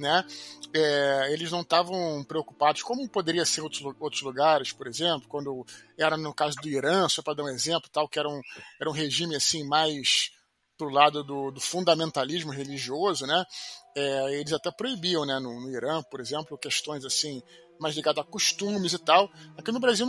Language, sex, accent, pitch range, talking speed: Portuguese, male, Brazilian, 150-195 Hz, 185 wpm